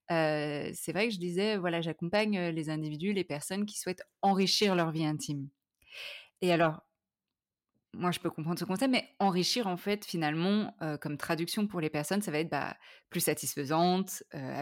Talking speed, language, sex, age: 180 wpm, French, female, 20-39